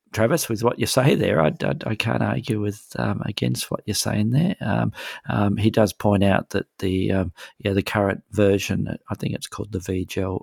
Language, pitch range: English, 90-100 Hz